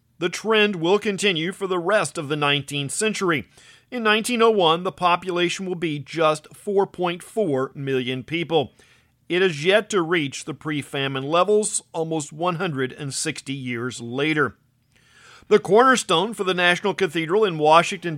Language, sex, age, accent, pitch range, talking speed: English, male, 50-69, American, 145-195 Hz, 135 wpm